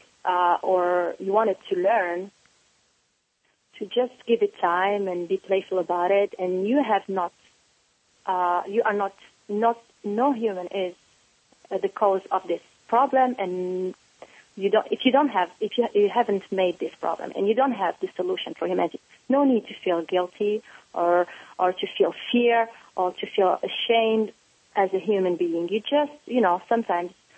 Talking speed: 175 wpm